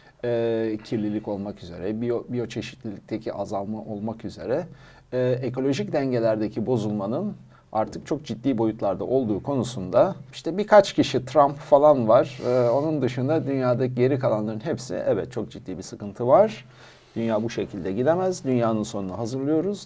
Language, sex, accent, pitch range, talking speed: Turkish, male, native, 115-150 Hz, 135 wpm